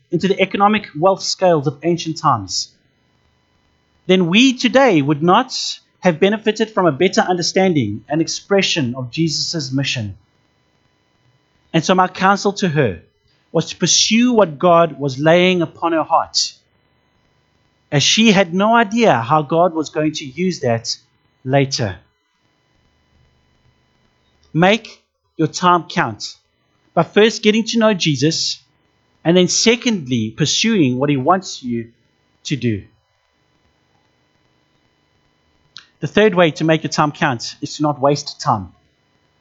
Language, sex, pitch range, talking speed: English, male, 145-195 Hz, 130 wpm